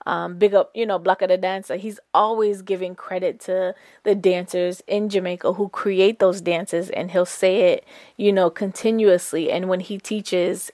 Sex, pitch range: female, 175-200 Hz